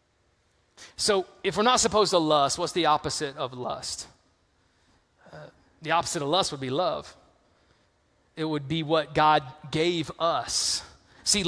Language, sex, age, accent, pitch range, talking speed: English, male, 20-39, American, 150-195 Hz, 145 wpm